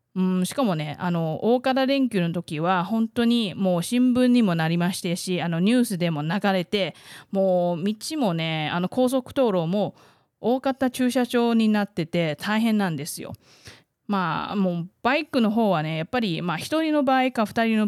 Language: Japanese